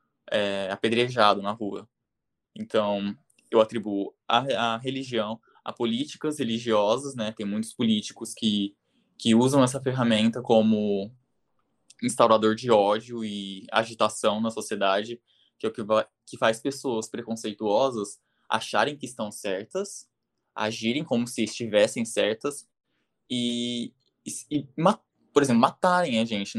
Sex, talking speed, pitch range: male, 125 wpm, 105-120 Hz